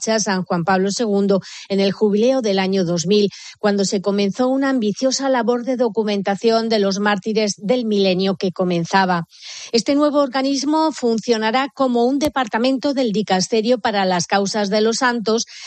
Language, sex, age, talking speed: Spanish, female, 30-49, 155 wpm